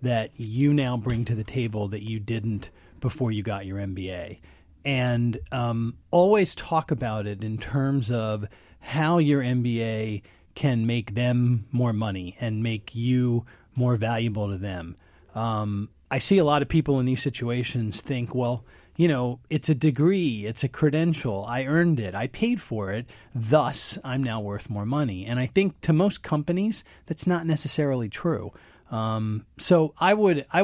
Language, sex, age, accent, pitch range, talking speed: English, male, 40-59, American, 105-140 Hz, 170 wpm